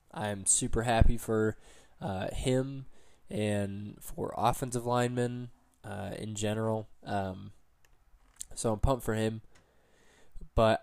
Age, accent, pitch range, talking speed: 20-39, American, 100-120 Hz, 110 wpm